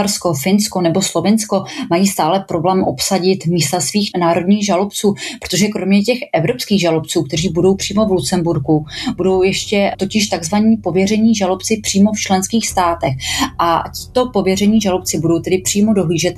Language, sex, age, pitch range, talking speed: Czech, female, 30-49, 175-205 Hz, 145 wpm